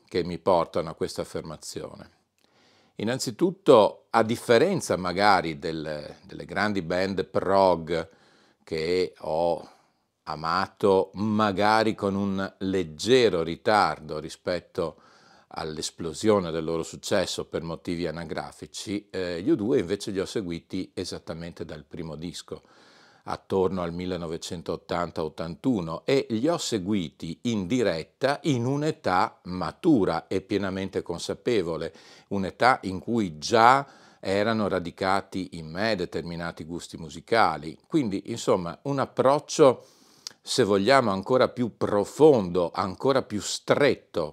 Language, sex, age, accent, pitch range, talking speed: Italian, male, 40-59, native, 85-110 Hz, 110 wpm